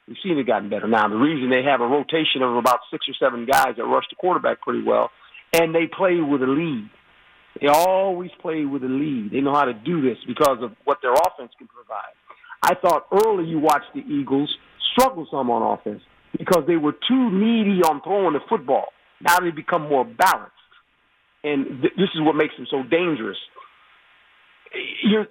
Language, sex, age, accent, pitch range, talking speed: English, male, 50-69, American, 150-215 Hz, 205 wpm